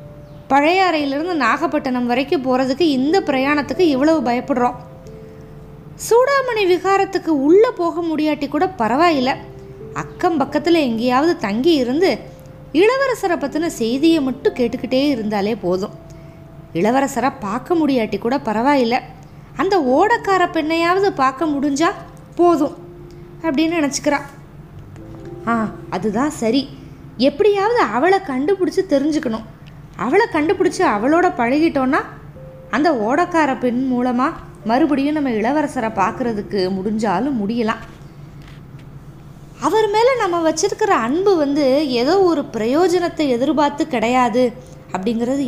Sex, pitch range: female, 225-335 Hz